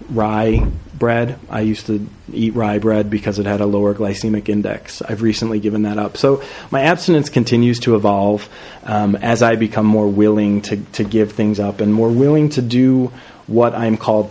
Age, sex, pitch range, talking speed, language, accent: 30-49, male, 105-130 Hz, 190 wpm, English, American